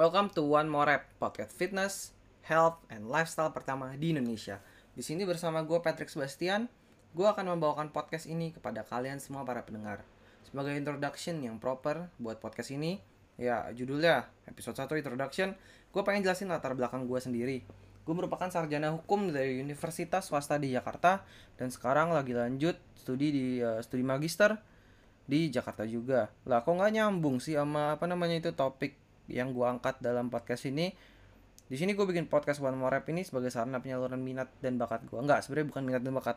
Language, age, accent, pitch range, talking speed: Indonesian, 20-39, native, 120-155 Hz, 175 wpm